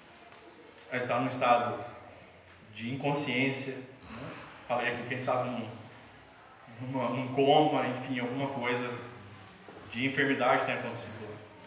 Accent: Brazilian